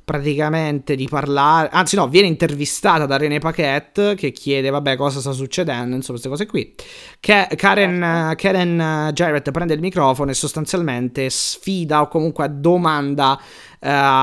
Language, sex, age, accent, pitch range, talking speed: Italian, male, 30-49, native, 125-165 Hz, 150 wpm